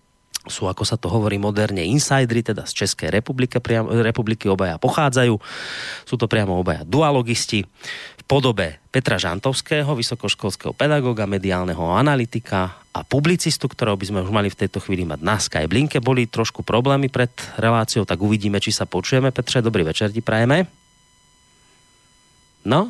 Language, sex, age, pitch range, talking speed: Slovak, male, 30-49, 100-140 Hz, 150 wpm